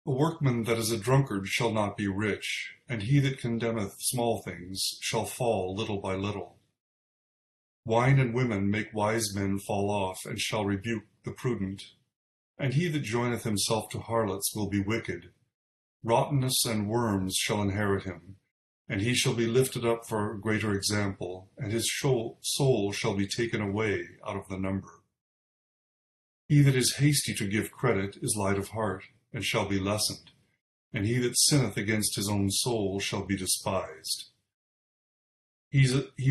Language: English